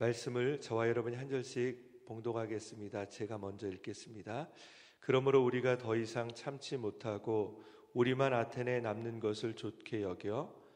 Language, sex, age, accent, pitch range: Korean, male, 40-59, native, 110-125 Hz